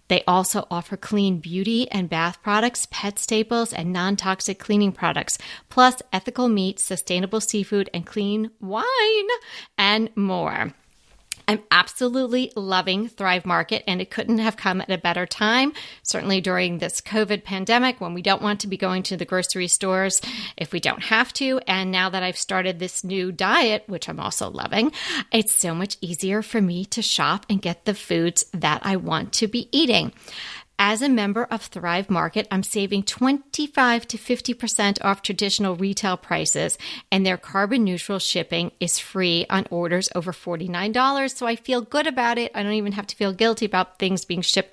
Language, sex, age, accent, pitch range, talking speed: English, female, 40-59, American, 180-220 Hz, 175 wpm